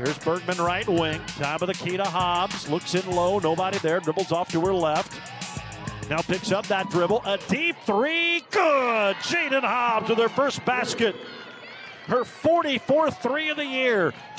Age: 50-69